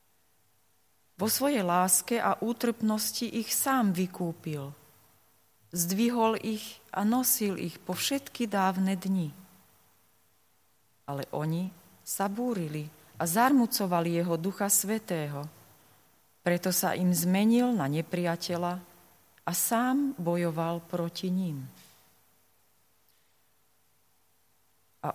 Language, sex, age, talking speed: Slovak, female, 30-49, 90 wpm